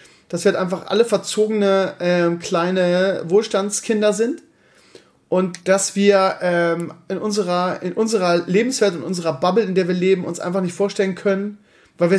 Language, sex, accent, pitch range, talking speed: German, male, German, 155-195 Hz, 160 wpm